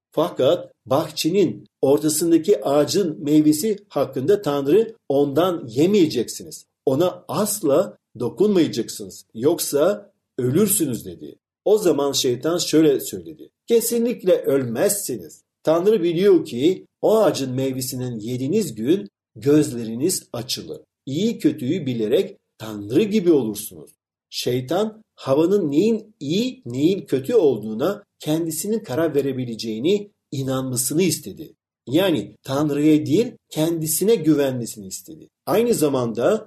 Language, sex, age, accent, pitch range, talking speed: Turkish, male, 50-69, native, 130-205 Hz, 95 wpm